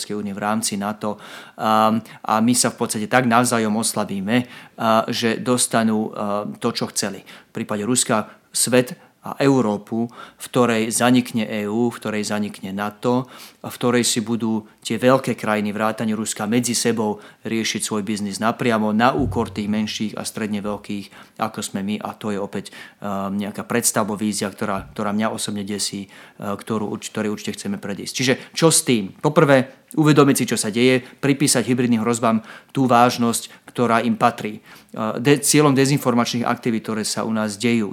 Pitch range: 105-120 Hz